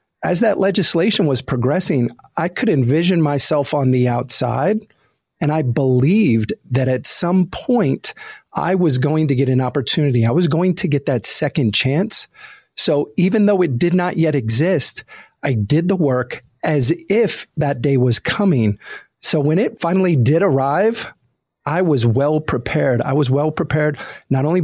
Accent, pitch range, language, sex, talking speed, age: American, 130-175 Hz, English, male, 165 wpm, 40-59